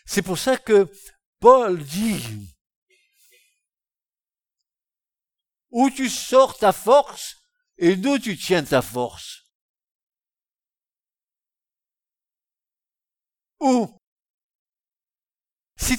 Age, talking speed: 60-79, 70 wpm